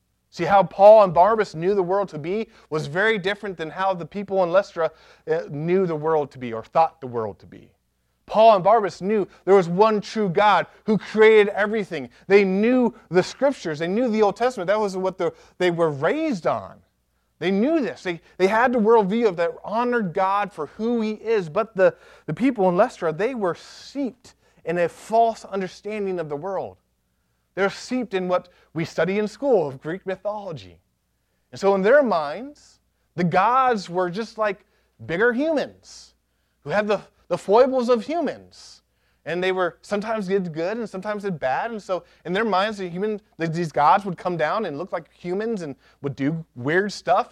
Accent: American